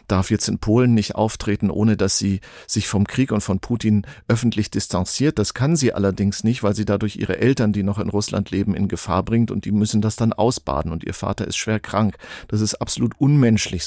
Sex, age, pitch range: male, 50-69, 100-115 Hz